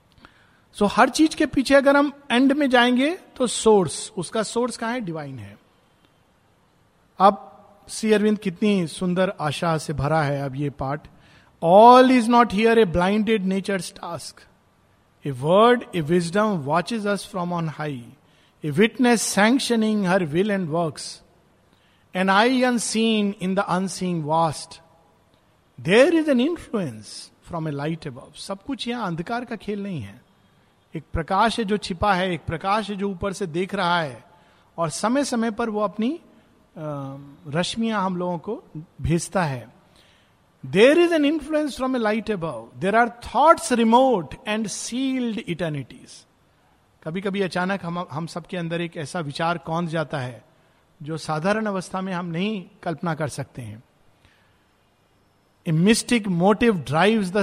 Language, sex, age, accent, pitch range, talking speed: Hindi, male, 50-69, native, 160-220 Hz, 155 wpm